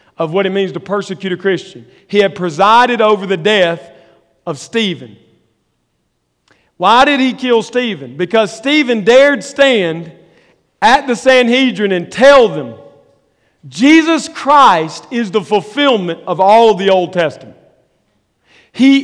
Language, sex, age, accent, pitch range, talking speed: English, male, 40-59, American, 155-230 Hz, 130 wpm